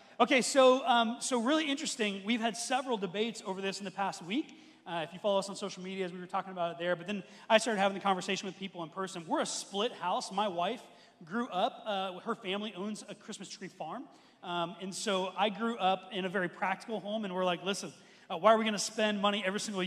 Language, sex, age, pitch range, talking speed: English, male, 30-49, 185-230 Hz, 250 wpm